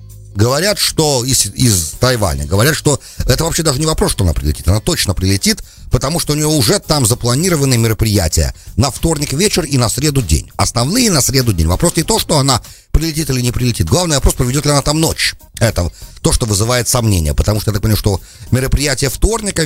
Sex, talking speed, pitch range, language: male, 200 wpm, 100-150 Hz, English